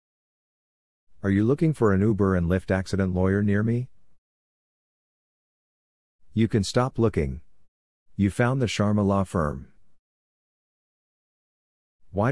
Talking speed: 110 wpm